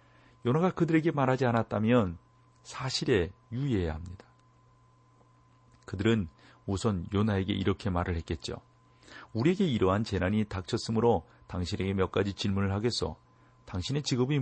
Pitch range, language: 85-120 Hz, Korean